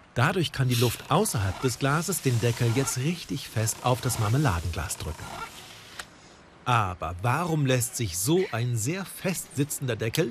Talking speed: 150 wpm